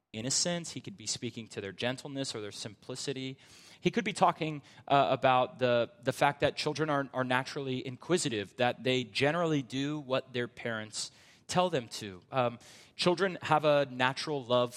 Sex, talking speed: male, 170 wpm